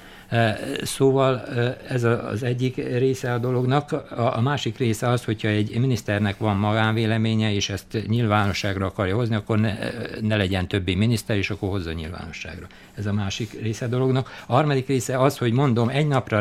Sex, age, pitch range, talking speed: male, 60-79, 105-125 Hz, 165 wpm